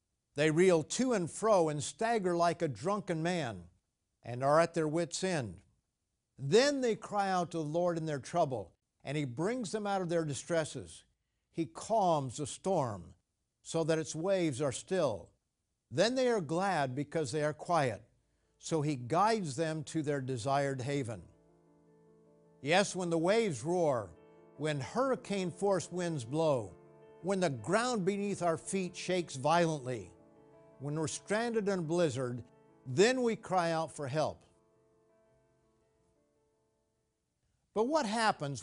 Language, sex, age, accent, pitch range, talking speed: English, male, 50-69, American, 135-185 Hz, 145 wpm